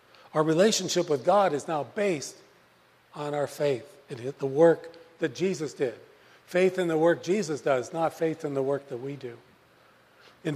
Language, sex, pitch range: English, male, 155-195 Hz